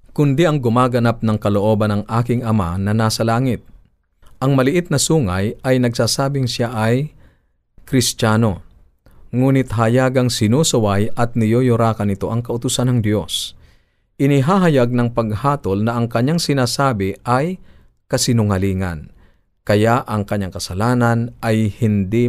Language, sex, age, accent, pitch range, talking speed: Filipino, male, 50-69, native, 95-125 Hz, 120 wpm